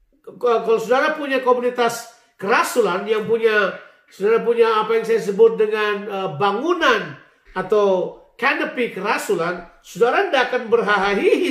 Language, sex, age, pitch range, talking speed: Indonesian, male, 40-59, 225-315 Hz, 120 wpm